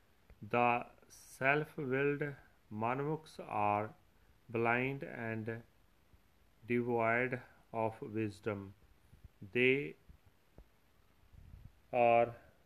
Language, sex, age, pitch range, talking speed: Punjabi, male, 40-59, 100-130 Hz, 50 wpm